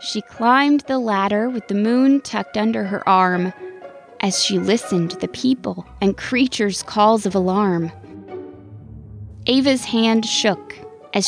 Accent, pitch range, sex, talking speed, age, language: American, 170-230 Hz, female, 140 wpm, 20-39, English